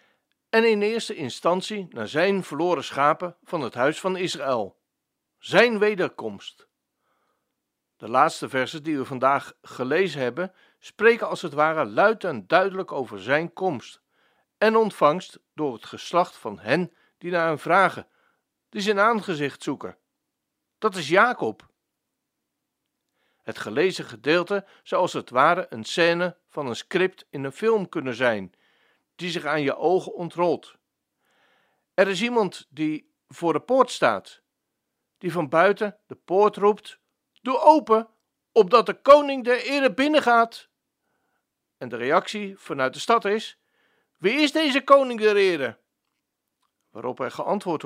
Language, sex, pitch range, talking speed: Dutch, male, 165-240 Hz, 140 wpm